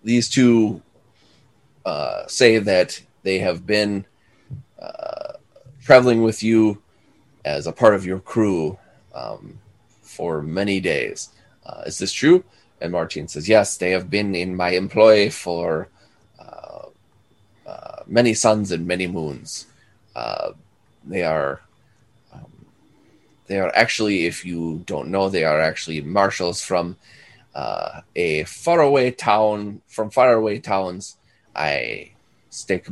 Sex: male